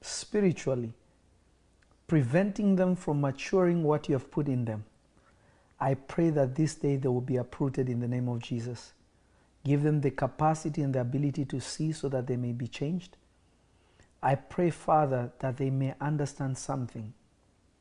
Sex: male